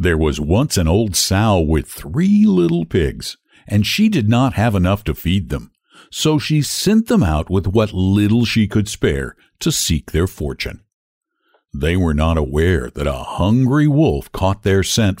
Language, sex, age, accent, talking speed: English, male, 60-79, American, 180 wpm